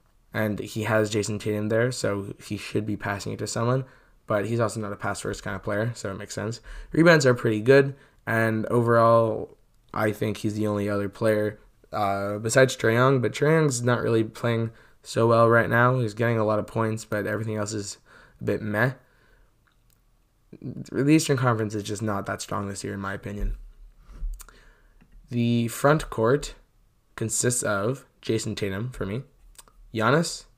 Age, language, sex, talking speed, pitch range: 20-39, English, male, 175 wpm, 105-120 Hz